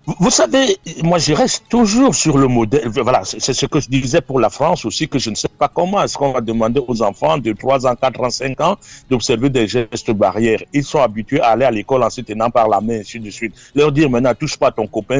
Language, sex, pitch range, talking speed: French, male, 120-155 Hz, 260 wpm